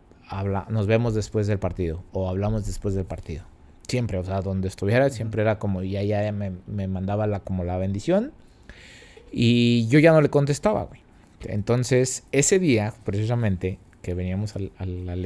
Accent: Mexican